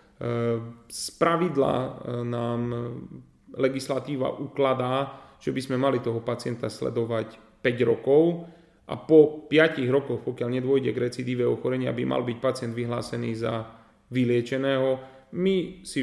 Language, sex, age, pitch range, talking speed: Slovak, male, 30-49, 120-150 Hz, 120 wpm